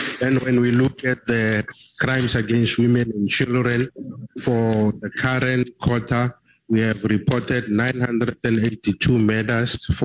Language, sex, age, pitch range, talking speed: English, male, 50-69, 105-120 Hz, 115 wpm